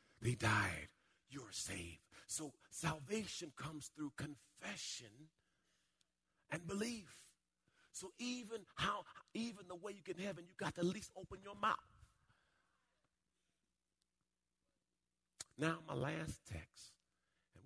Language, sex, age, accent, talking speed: English, male, 40-59, American, 115 wpm